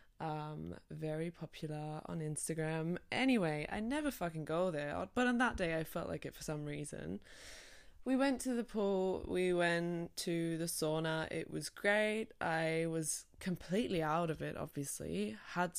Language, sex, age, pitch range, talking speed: English, female, 20-39, 150-180 Hz, 165 wpm